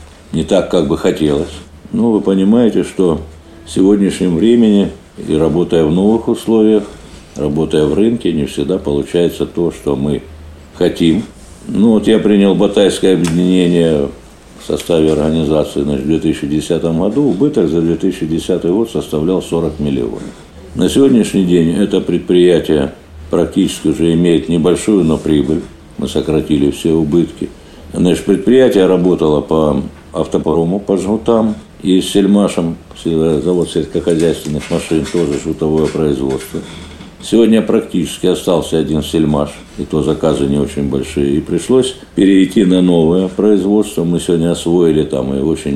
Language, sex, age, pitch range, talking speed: Russian, male, 60-79, 75-95 Hz, 130 wpm